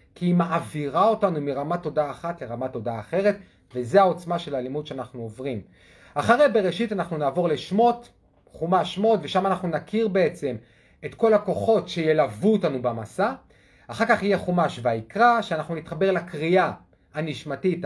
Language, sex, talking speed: Hebrew, male, 145 wpm